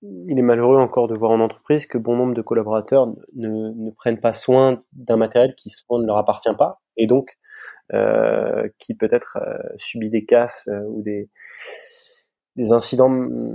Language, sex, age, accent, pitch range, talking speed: French, male, 20-39, French, 115-135 Hz, 175 wpm